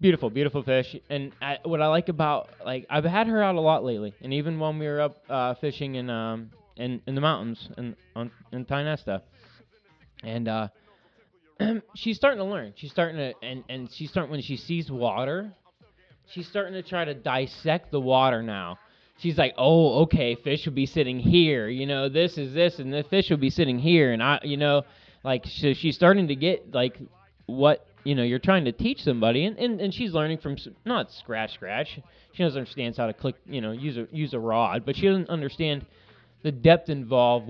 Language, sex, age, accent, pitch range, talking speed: English, male, 20-39, American, 130-165 Hz, 210 wpm